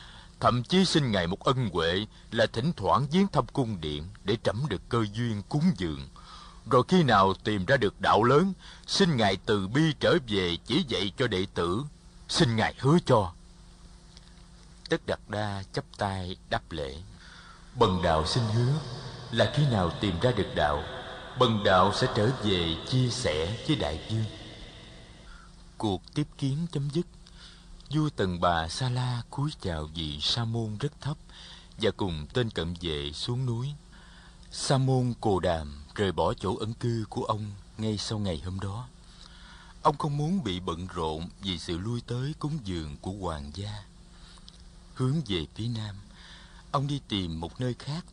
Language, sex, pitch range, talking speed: Vietnamese, male, 90-130 Hz, 170 wpm